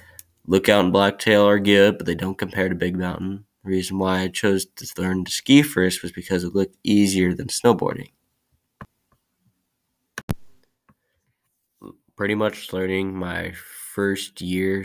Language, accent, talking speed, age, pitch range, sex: English, American, 140 wpm, 20-39, 90-95 Hz, male